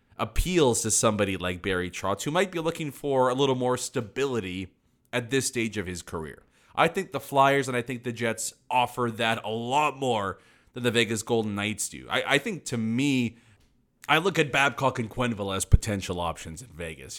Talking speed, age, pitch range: 200 wpm, 30-49, 100-130 Hz